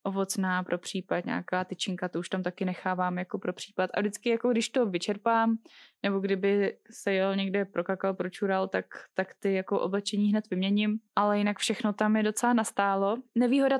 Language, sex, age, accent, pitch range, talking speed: Czech, female, 10-29, native, 190-225 Hz, 180 wpm